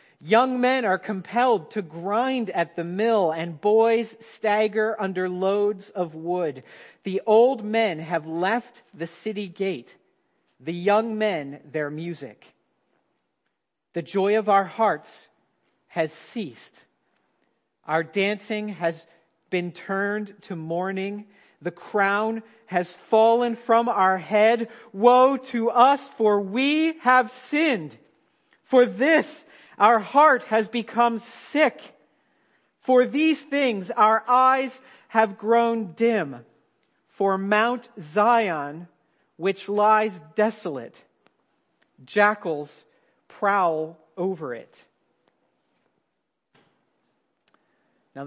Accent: American